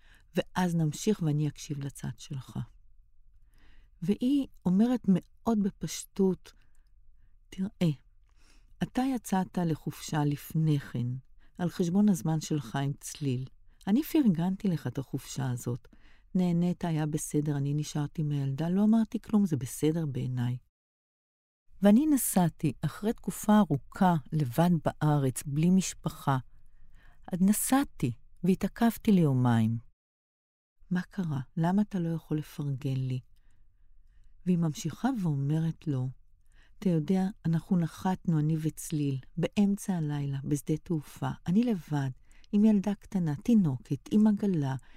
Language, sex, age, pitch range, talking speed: Hebrew, female, 50-69, 135-185 Hz, 110 wpm